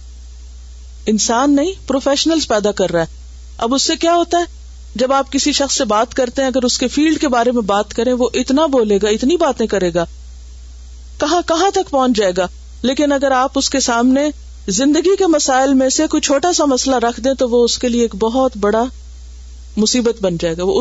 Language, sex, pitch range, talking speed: Urdu, female, 190-290 Hz, 215 wpm